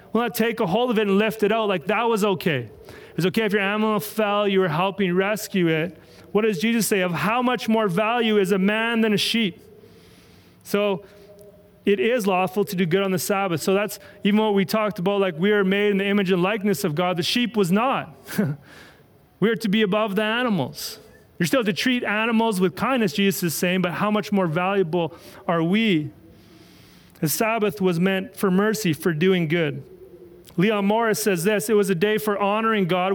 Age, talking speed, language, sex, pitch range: 30-49, 215 wpm, English, male, 180-210 Hz